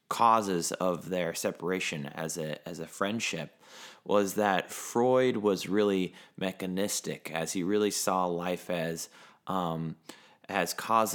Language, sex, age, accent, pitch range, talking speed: English, male, 20-39, American, 85-95 Hz, 130 wpm